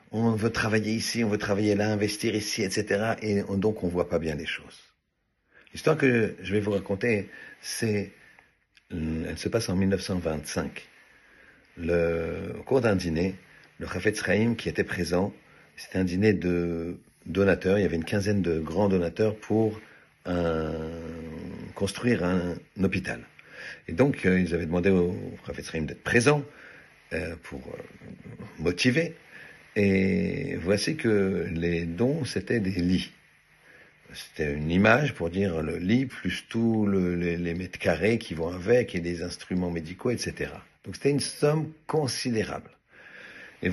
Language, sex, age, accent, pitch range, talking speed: French, male, 50-69, French, 85-110 Hz, 155 wpm